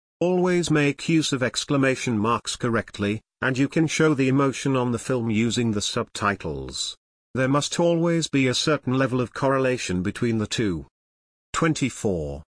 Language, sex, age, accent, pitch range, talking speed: English, male, 50-69, British, 110-140 Hz, 155 wpm